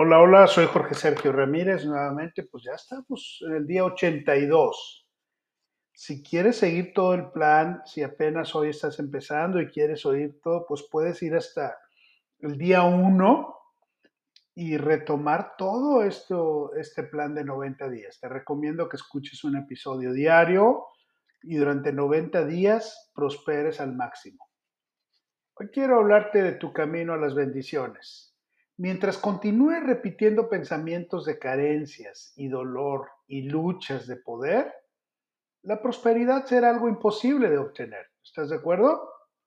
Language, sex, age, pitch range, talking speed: Spanish, male, 40-59, 145-215 Hz, 135 wpm